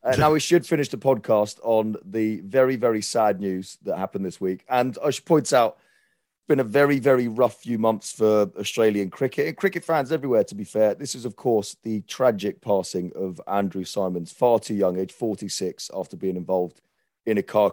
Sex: male